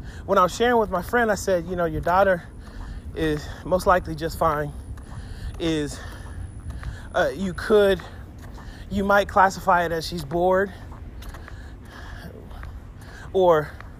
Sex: male